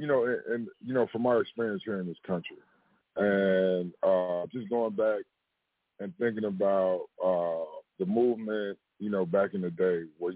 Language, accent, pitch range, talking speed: English, American, 95-120 Hz, 180 wpm